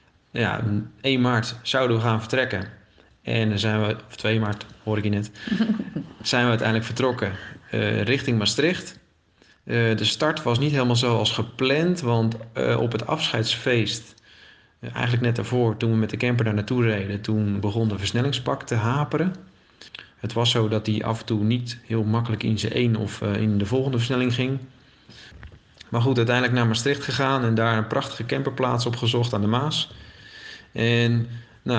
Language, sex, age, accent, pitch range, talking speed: Dutch, male, 40-59, Dutch, 110-125 Hz, 175 wpm